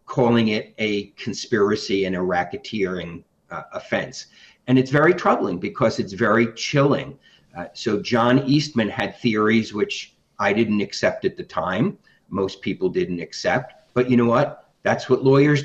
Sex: male